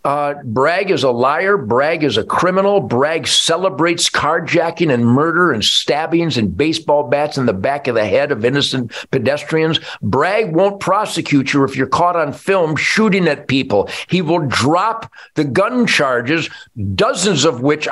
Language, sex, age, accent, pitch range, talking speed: English, male, 50-69, American, 140-195 Hz, 165 wpm